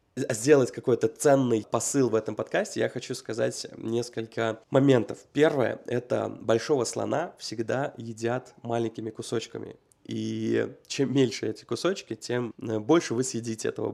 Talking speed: 130 wpm